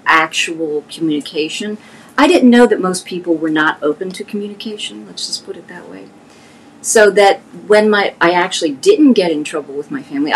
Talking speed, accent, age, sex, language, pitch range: 185 wpm, American, 40-59, female, English, 170-230 Hz